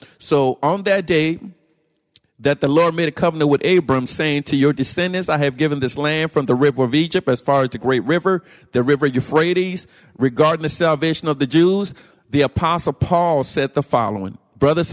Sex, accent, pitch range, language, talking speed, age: male, American, 130-165 Hz, English, 195 wpm, 50-69